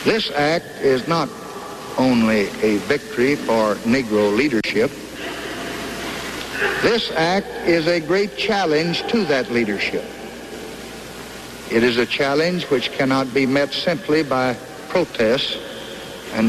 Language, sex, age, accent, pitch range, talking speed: English, male, 60-79, American, 140-190 Hz, 115 wpm